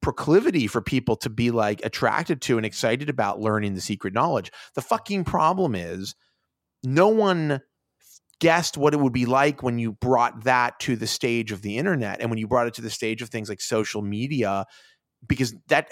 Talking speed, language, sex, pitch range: 195 wpm, English, male, 110-155 Hz